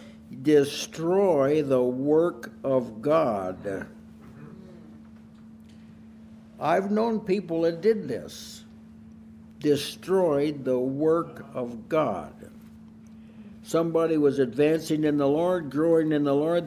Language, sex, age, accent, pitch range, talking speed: English, male, 60-79, American, 110-160 Hz, 95 wpm